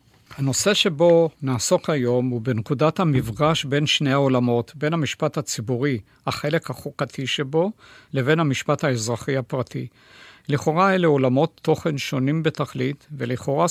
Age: 60-79